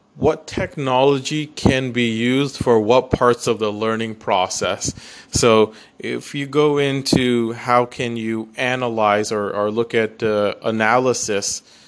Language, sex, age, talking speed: English, male, 30-49, 135 wpm